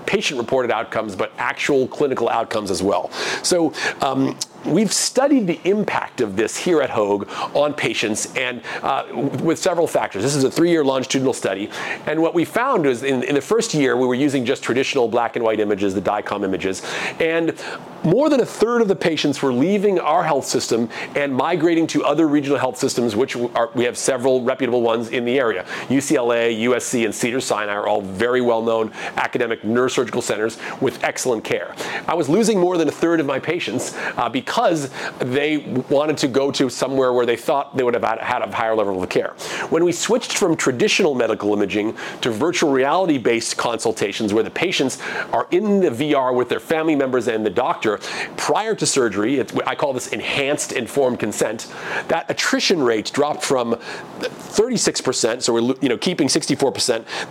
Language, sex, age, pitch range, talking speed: English, male, 40-59, 120-165 Hz, 185 wpm